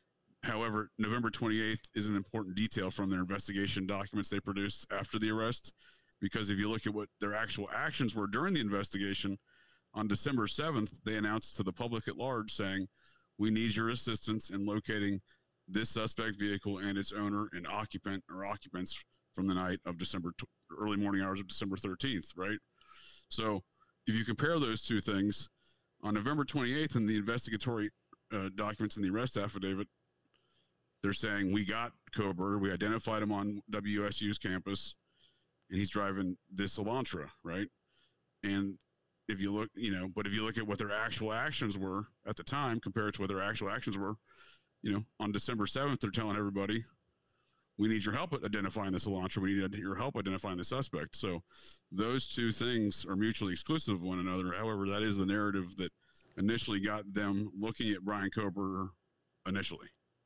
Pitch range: 100-110 Hz